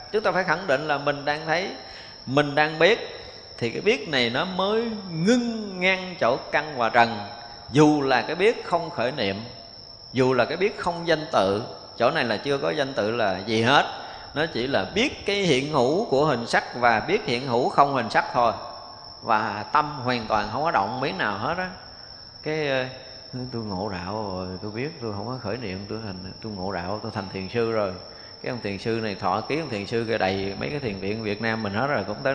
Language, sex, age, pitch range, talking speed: Vietnamese, male, 20-39, 110-160 Hz, 225 wpm